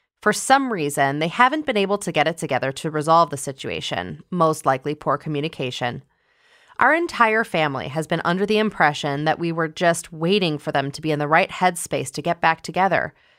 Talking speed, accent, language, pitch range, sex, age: 195 wpm, American, English, 150-205 Hz, female, 20-39